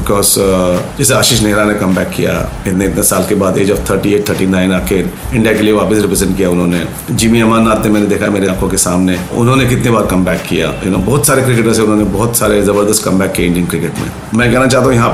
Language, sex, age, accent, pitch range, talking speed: Hindi, male, 40-59, native, 105-135 Hz, 245 wpm